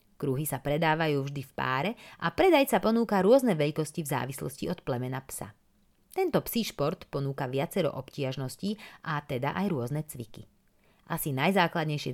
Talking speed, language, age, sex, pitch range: 145 wpm, Slovak, 30-49, female, 140-205 Hz